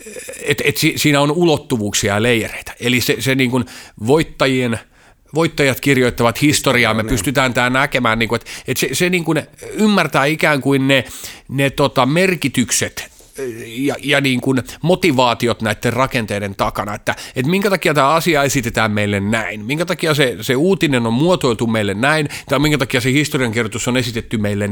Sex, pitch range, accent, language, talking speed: male, 110-145 Hz, native, Finnish, 165 wpm